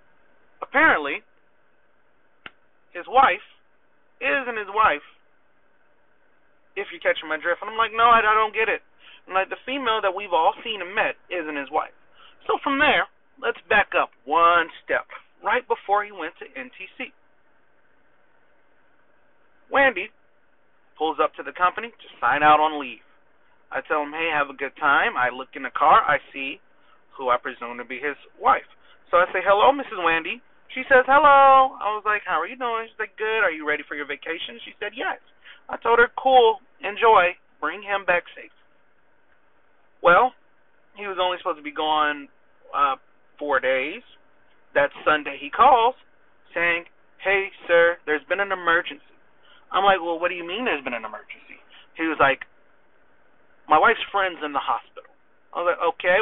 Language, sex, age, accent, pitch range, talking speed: English, male, 30-49, American, 155-230 Hz, 170 wpm